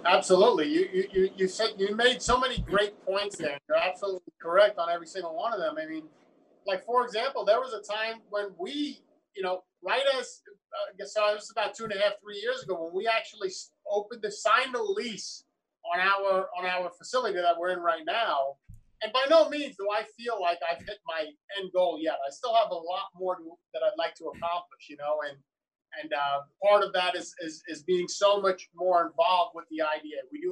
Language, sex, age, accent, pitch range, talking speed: English, male, 30-49, American, 175-255 Hz, 225 wpm